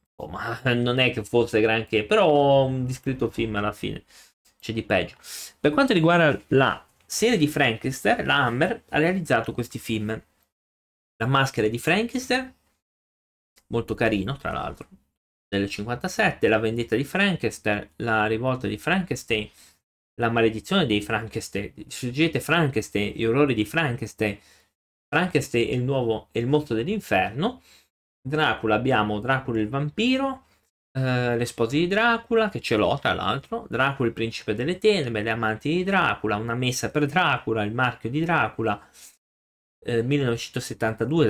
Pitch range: 105-140 Hz